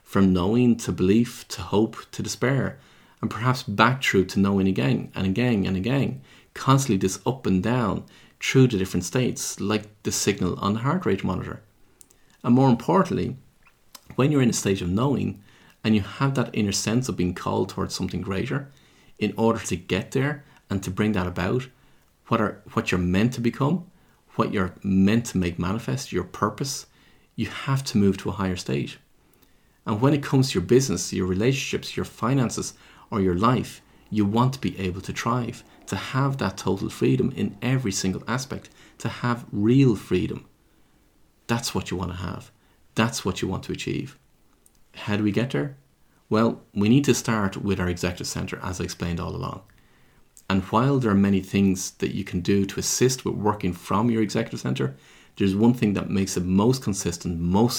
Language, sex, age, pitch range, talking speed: English, male, 30-49, 95-125 Hz, 190 wpm